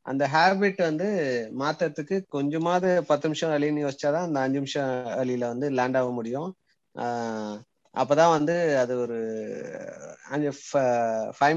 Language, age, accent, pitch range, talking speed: Tamil, 30-49, native, 130-165 Hz, 120 wpm